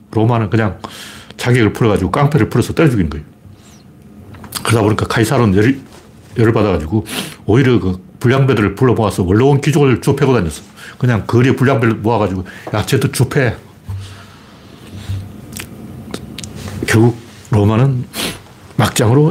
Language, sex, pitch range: Korean, male, 105-135 Hz